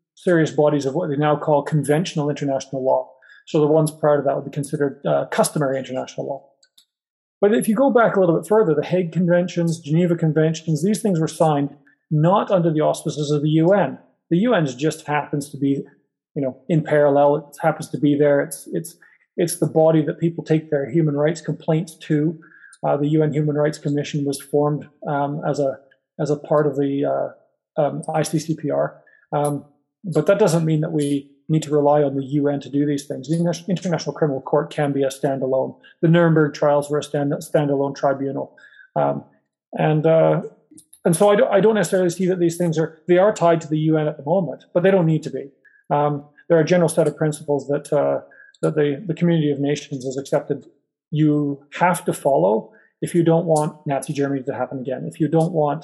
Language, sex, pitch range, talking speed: English, male, 145-165 Hz, 210 wpm